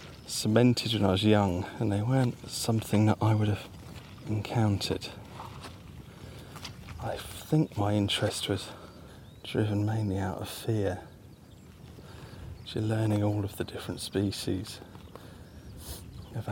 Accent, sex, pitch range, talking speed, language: British, male, 100-110 Hz, 115 wpm, English